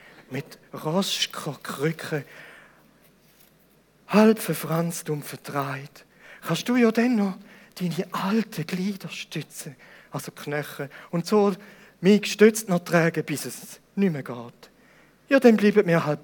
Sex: male